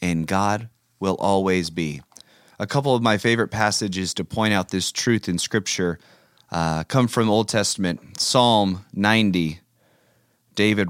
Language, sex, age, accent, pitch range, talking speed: English, male, 30-49, American, 100-140 Hz, 145 wpm